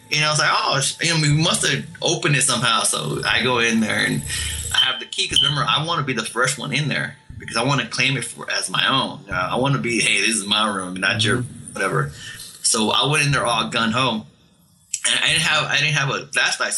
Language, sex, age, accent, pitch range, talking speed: English, male, 20-39, American, 115-150 Hz, 260 wpm